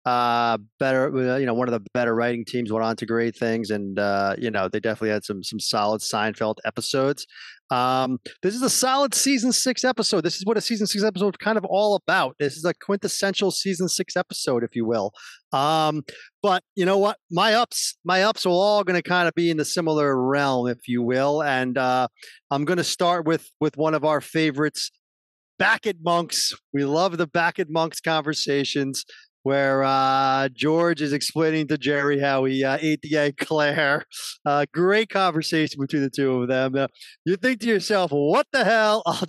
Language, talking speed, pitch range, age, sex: English, 205 wpm, 135-190 Hz, 40-59, male